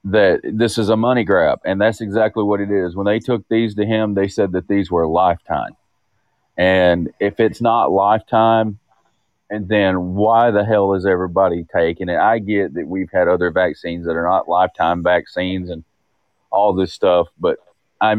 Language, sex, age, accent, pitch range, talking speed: English, male, 30-49, American, 100-150 Hz, 185 wpm